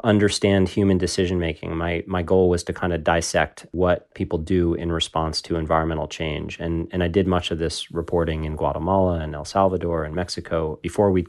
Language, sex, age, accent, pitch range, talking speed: English, male, 30-49, American, 80-95 Hz, 195 wpm